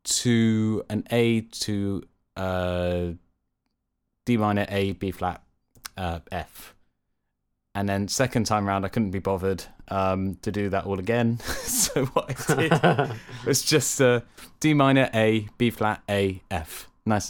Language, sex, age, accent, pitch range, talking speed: English, male, 20-39, British, 95-125 Hz, 145 wpm